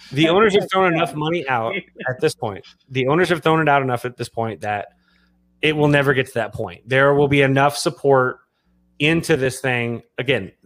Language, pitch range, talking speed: English, 120-155 Hz, 210 wpm